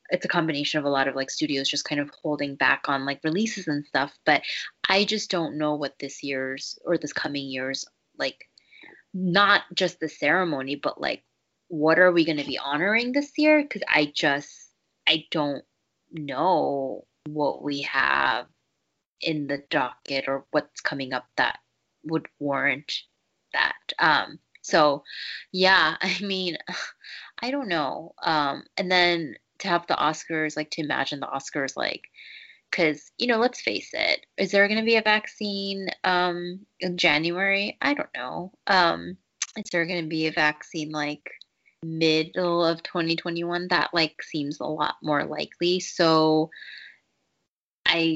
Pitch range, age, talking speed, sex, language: 145-185 Hz, 20-39, 160 wpm, female, English